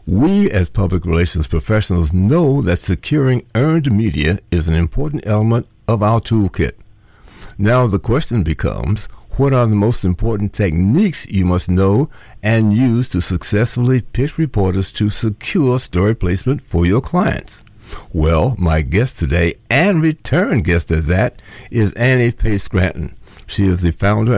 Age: 60-79